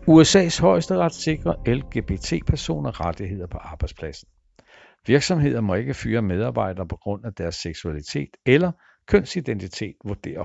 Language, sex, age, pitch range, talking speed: Danish, male, 60-79, 95-140 Hz, 115 wpm